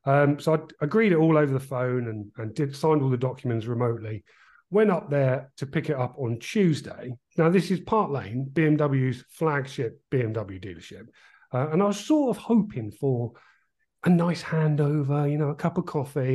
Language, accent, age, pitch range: English, British, 40-59, 125-165 Hz